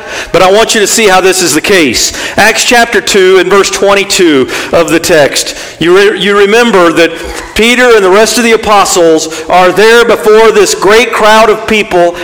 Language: English